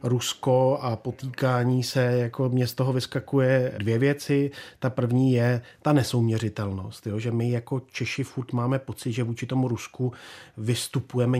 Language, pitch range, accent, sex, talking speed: Czech, 110-130 Hz, native, male, 145 wpm